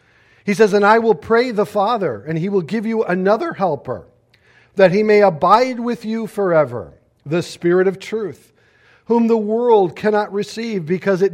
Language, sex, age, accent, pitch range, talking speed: English, male, 50-69, American, 170-210 Hz, 175 wpm